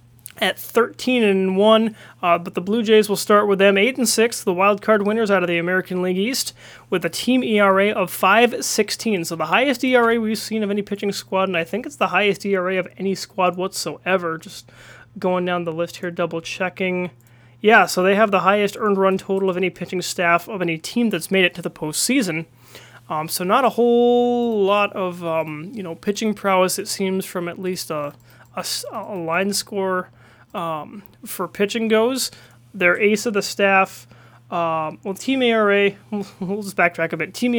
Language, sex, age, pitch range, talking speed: English, male, 30-49, 175-215 Hz, 200 wpm